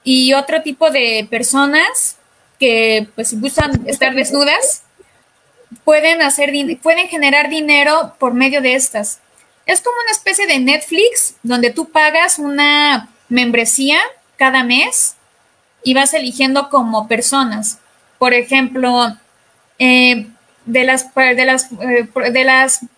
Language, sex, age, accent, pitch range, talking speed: Spanish, female, 20-39, Mexican, 255-310 Hz, 125 wpm